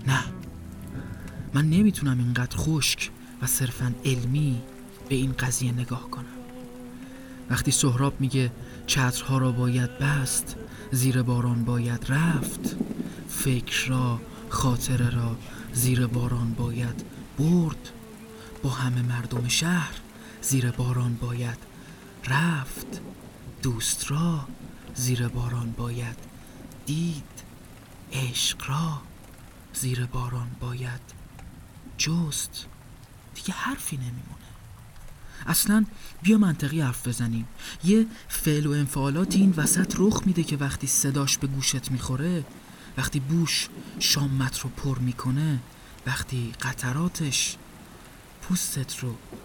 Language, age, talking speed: Persian, 30-49, 100 wpm